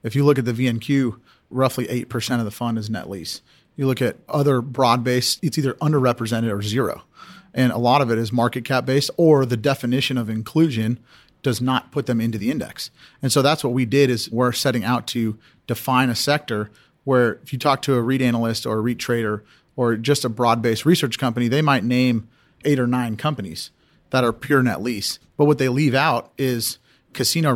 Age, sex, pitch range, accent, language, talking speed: 40-59, male, 120-140 Hz, American, English, 205 wpm